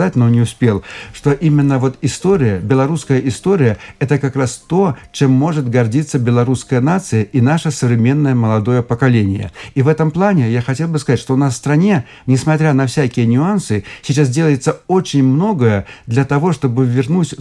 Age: 60-79